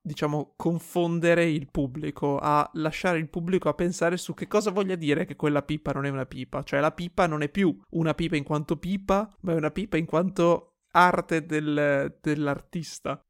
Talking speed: 190 wpm